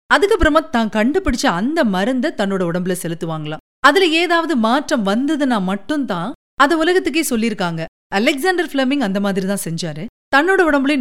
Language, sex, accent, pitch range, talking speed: Tamil, female, native, 200-295 Hz, 70 wpm